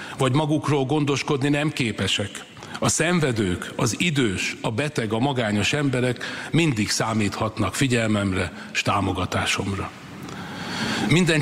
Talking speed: 105 wpm